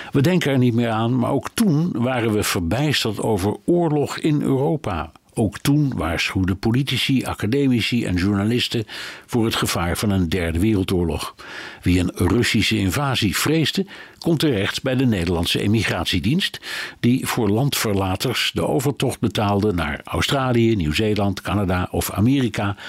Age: 60-79